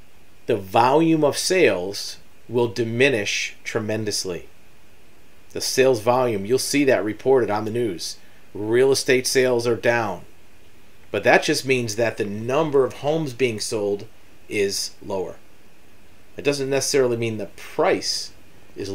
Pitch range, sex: 110-135 Hz, male